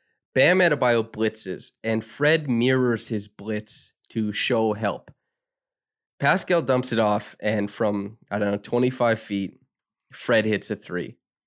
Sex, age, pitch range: male, 20-39, 100-120 Hz